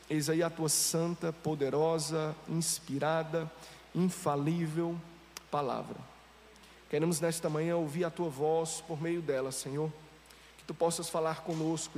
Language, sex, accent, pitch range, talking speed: Portuguese, male, Brazilian, 150-180 Hz, 125 wpm